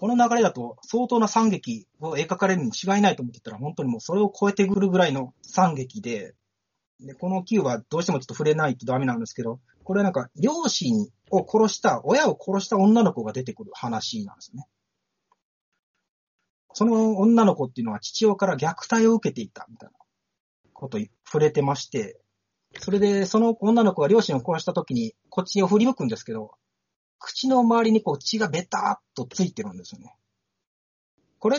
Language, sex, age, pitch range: Japanese, male, 40-59, 140-220 Hz